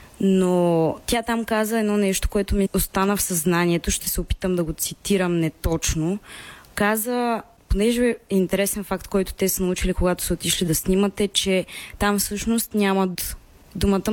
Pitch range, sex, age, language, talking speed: 175-205 Hz, female, 20-39, Bulgarian, 155 wpm